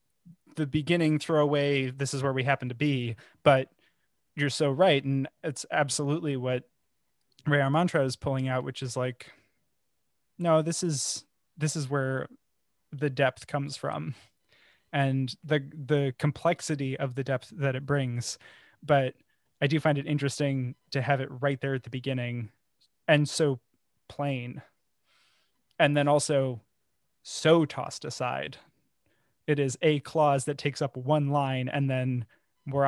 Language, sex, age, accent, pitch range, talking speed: English, male, 20-39, American, 130-145 Hz, 150 wpm